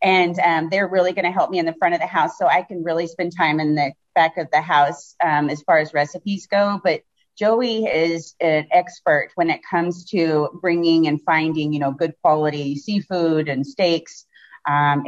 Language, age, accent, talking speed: English, 30-49, American, 205 wpm